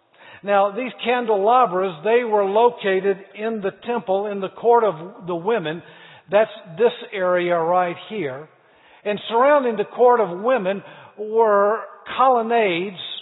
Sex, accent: male, American